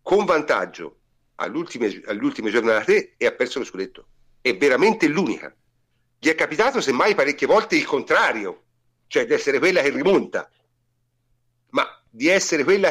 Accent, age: native, 50-69